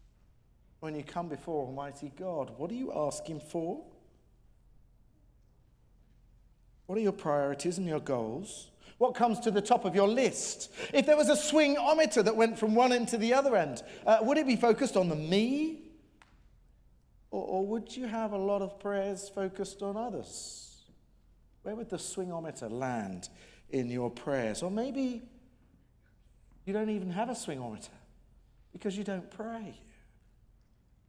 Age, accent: 40-59, British